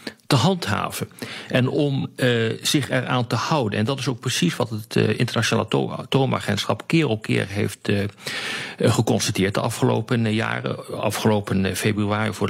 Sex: male